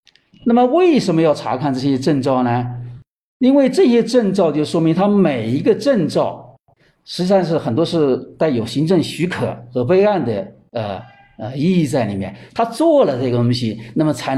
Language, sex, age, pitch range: Chinese, male, 50-69, 125-200 Hz